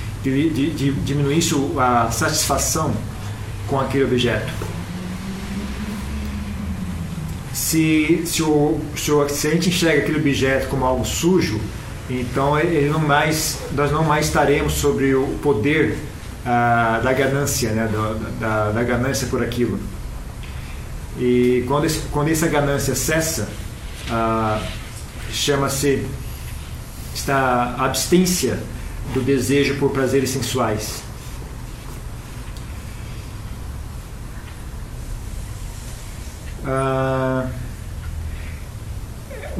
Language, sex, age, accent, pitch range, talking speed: Portuguese, male, 40-59, Brazilian, 110-145 Hz, 85 wpm